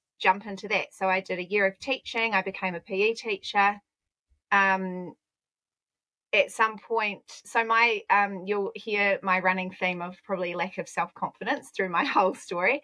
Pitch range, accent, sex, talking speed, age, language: 185-210 Hz, Australian, female, 170 wpm, 30-49, English